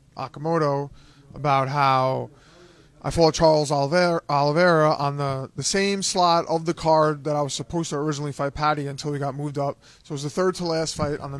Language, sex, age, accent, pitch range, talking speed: English, male, 20-39, American, 140-170 Hz, 205 wpm